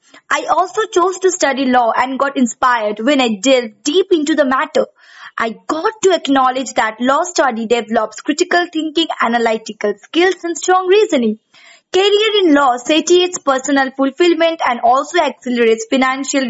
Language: English